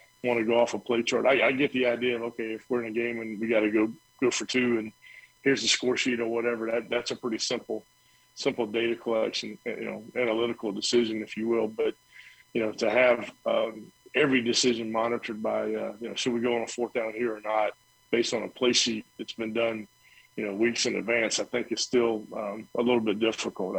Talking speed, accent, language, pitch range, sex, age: 235 wpm, American, English, 110-125 Hz, male, 40-59